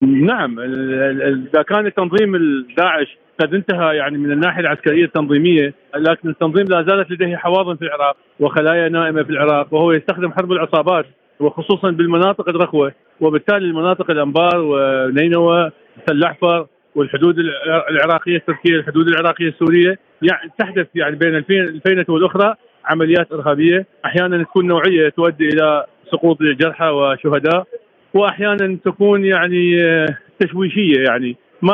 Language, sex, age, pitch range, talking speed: Arabic, male, 40-59, 155-190 Hz, 120 wpm